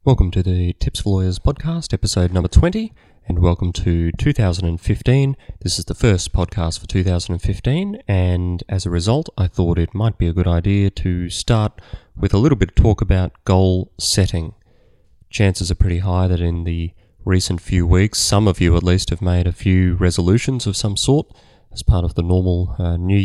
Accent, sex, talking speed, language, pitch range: Australian, male, 190 wpm, English, 85-105 Hz